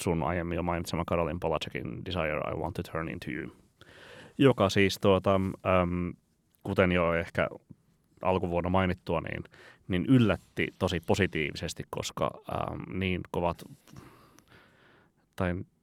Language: Finnish